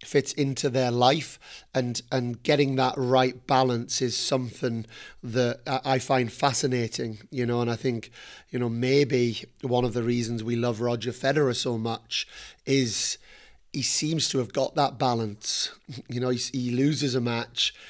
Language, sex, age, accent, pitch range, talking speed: English, male, 30-49, British, 120-135 Hz, 165 wpm